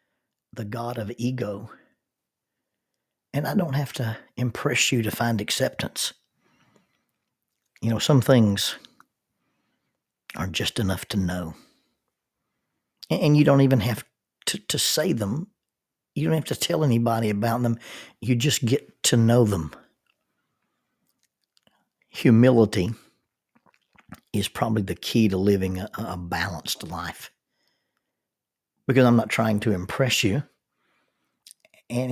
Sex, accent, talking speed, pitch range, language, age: male, American, 120 wpm, 105-125 Hz, English, 60-79